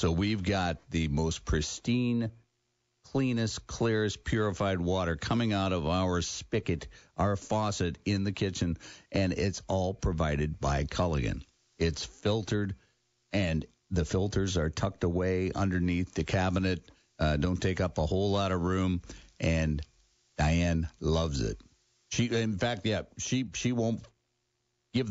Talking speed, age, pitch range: 140 wpm, 60-79, 85-115 Hz